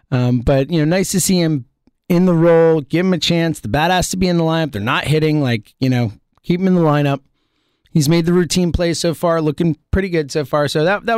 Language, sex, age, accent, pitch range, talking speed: English, male, 30-49, American, 155-205 Hz, 260 wpm